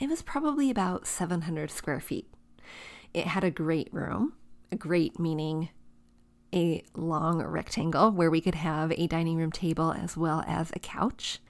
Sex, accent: female, American